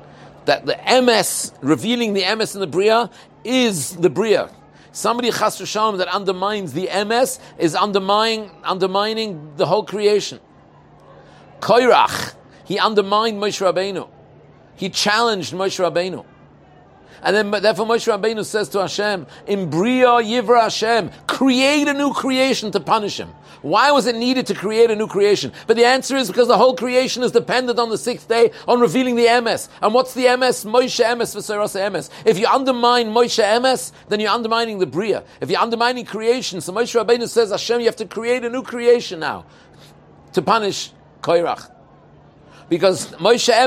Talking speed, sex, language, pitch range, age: 160 wpm, male, English, 180-235 Hz, 50-69